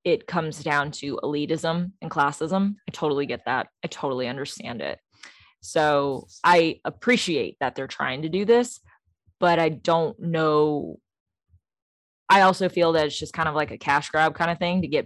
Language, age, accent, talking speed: English, 20-39, American, 180 wpm